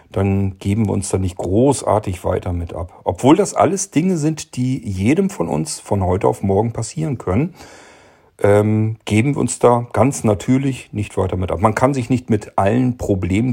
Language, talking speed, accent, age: German, 190 wpm, German, 40-59